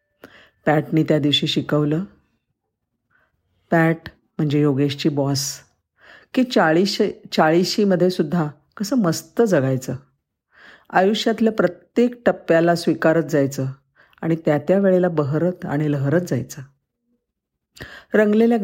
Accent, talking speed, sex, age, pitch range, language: native, 95 wpm, female, 50-69, 145-190 Hz, Marathi